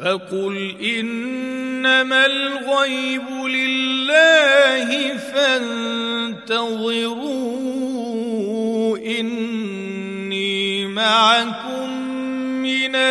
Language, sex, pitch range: Arabic, male, 215-230 Hz